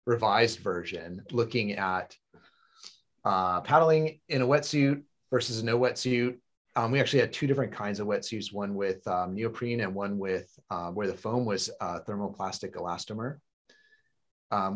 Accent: American